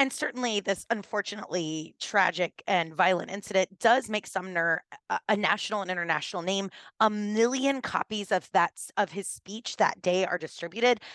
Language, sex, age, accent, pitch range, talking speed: English, female, 20-39, American, 170-215 Hz, 145 wpm